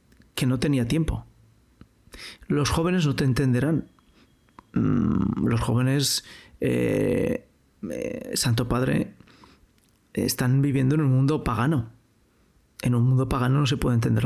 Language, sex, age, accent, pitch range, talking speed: Spanish, male, 40-59, Spanish, 125-165 Hz, 120 wpm